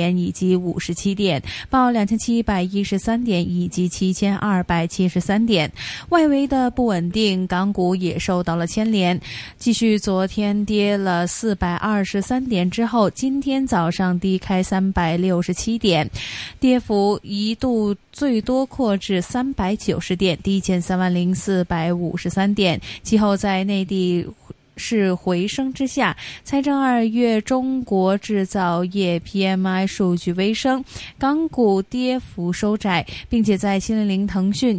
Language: Chinese